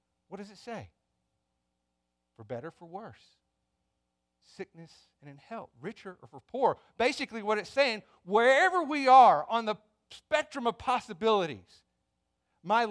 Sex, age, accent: male, 40-59, American